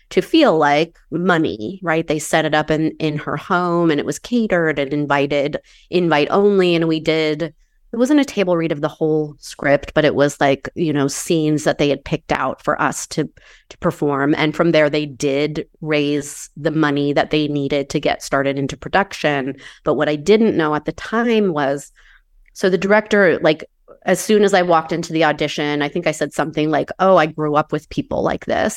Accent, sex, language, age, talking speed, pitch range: American, female, English, 30-49, 210 wpm, 145-170 Hz